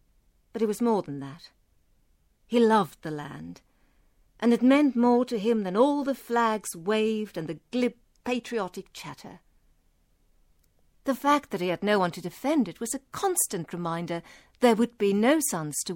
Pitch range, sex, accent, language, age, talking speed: 165-235 Hz, female, British, English, 50-69, 175 wpm